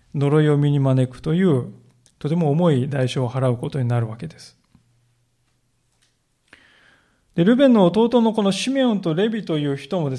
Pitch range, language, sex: 135-170 Hz, Japanese, male